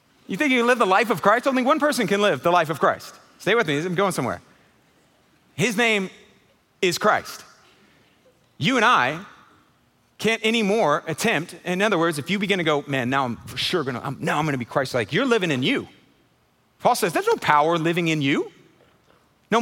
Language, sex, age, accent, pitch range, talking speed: English, male, 40-59, American, 135-195 Hz, 210 wpm